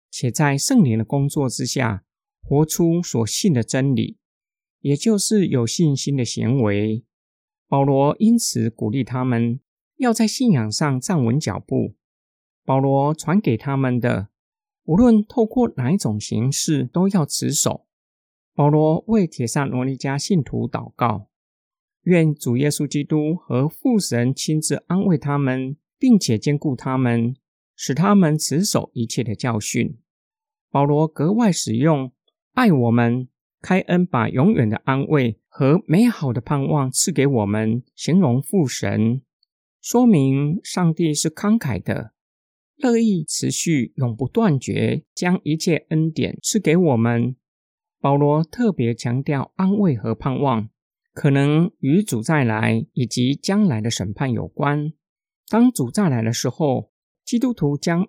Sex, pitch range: male, 125-180 Hz